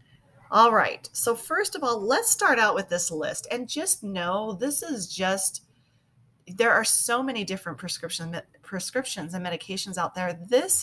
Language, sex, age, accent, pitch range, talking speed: English, female, 30-49, American, 150-210 Hz, 160 wpm